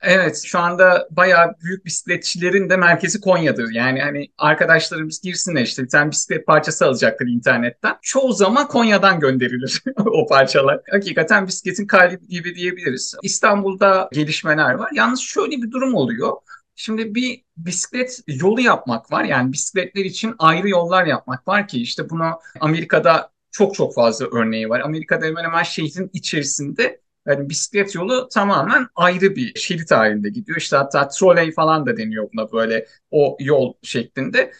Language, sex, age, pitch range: Turkish, male, 50-69, 155-215 Hz